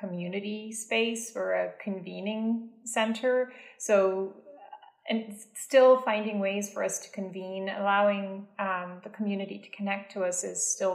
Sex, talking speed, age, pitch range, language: female, 135 wpm, 30-49, 185-220 Hz, English